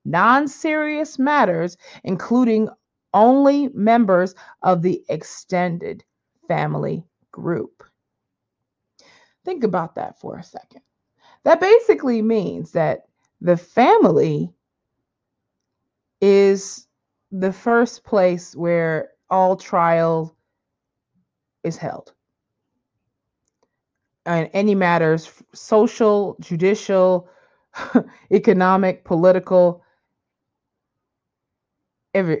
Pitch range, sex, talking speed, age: 175-220 Hz, female, 70 wpm, 30-49